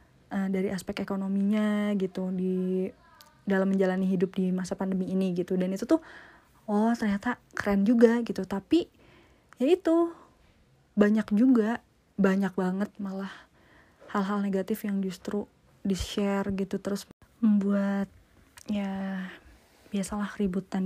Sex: female